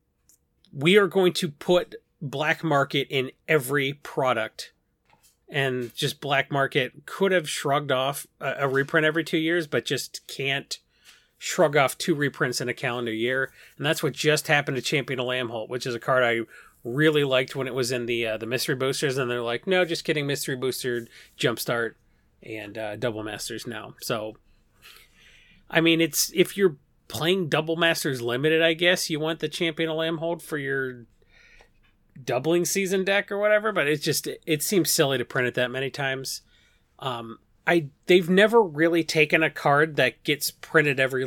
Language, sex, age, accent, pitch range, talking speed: English, male, 30-49, American, 125-165 Hz, 180 wpm